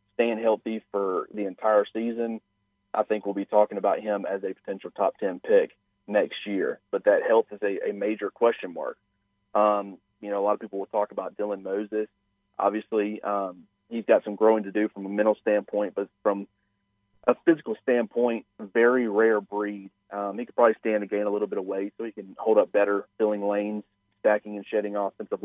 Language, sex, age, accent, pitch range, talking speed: English, male, 40-59, American, 100-110 Hz, 200 wpm